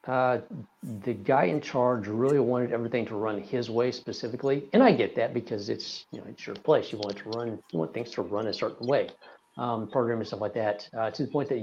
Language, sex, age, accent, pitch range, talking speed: English, male, 60-79, American, 105-125 Hz, 250 wpm